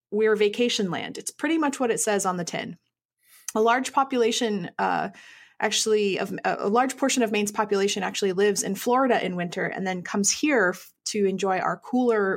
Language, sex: English, female